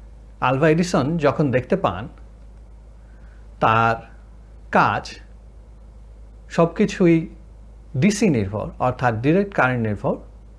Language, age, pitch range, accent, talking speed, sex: Bengali, 60-79, 115-180 Hz, native, 80 wpm, male